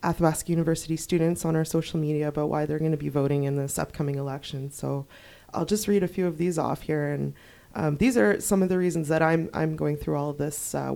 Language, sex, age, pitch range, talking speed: English, female, 20-39, 145-170 Hz, 245 wpm